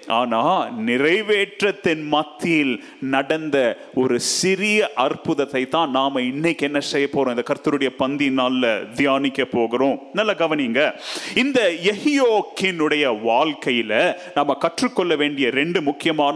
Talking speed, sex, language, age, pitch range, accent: 50 wpm, male, Tamil, 30-49, 145-225 Hz, native